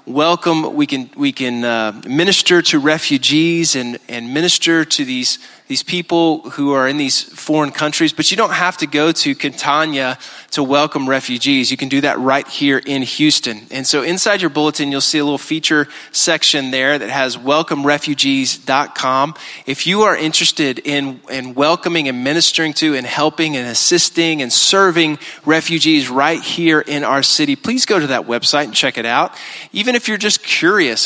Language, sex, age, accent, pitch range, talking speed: English, male, 30-49, American, 135-170 Hz, 180 wpm